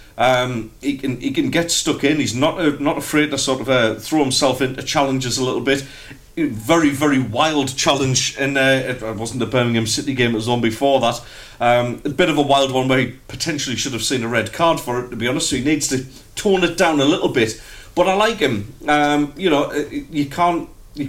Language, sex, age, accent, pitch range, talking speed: English, male, 40-59, British, 120-145 Hz, 235 wpm